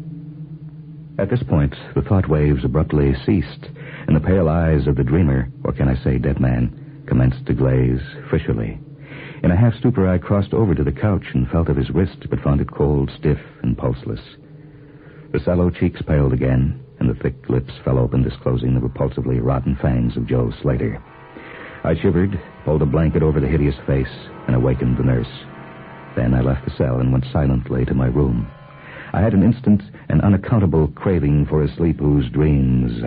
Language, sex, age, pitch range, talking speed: English, male, 60-79, 65-95 Hz, 185 wpm